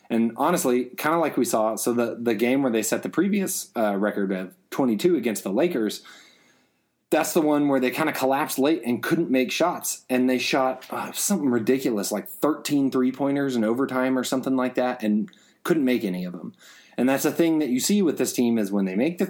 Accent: American